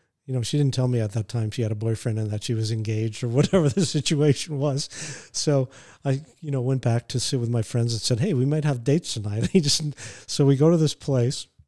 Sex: male